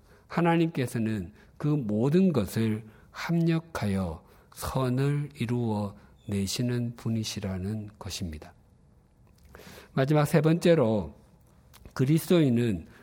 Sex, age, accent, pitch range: male, 50-69, native, 100-145 Hz